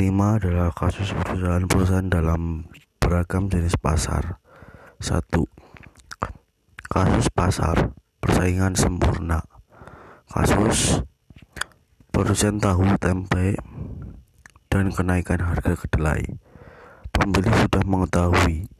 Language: Indonesian